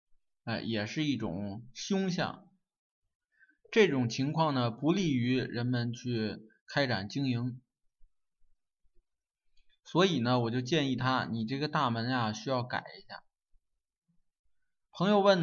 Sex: male